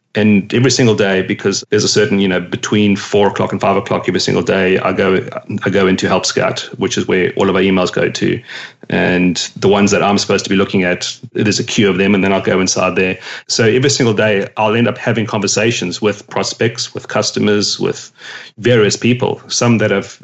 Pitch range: 95-110 Hz